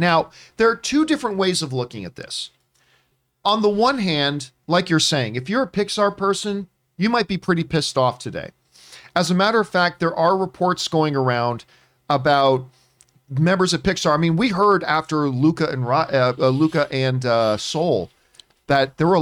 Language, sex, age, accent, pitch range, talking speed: English, male, 40-59, American, 130-175 Hz, 180 wpm